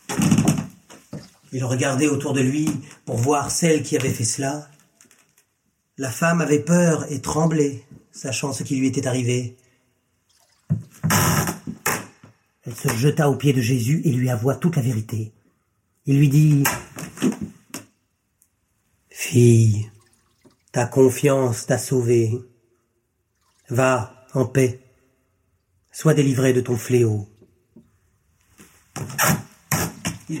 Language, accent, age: French, French, 40-59